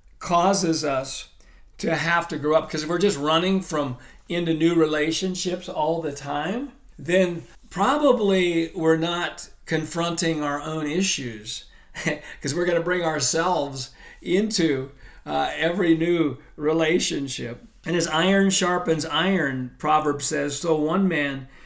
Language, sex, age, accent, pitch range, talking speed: English, male, 50-69, American, 145-175 Hz, 135 wpm